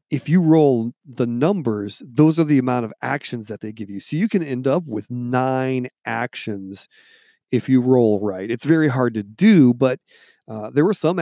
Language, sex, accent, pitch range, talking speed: English, male, American, 115-150 Hz, 200 wpm